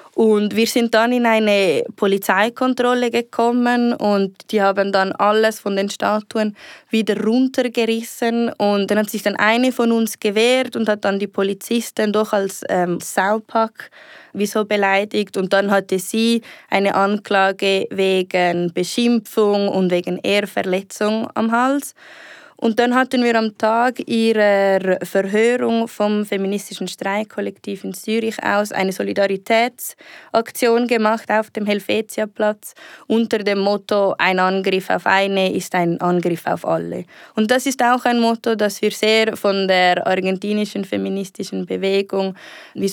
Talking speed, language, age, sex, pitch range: 135 wpm, French, 20-39, female, 190-225 Hz